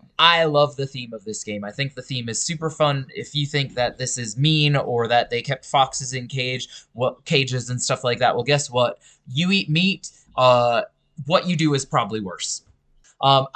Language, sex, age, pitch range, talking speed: English, male, 20-39, 125-155 Hz, 210 wpm